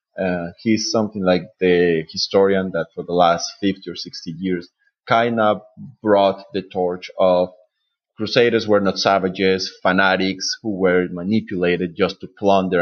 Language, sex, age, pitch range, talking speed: English, male, 30-49, 95-120 Hz, 145 wpm